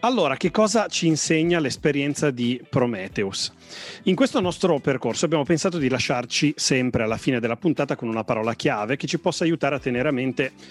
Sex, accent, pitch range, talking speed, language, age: male, native, 120-155 Hz, 185 wpm, Italian, 30-49